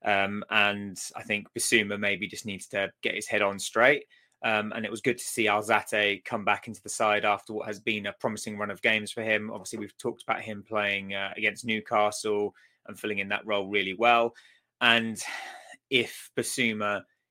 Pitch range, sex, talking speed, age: 105-125 Hz, male, 200 wpm, 20-39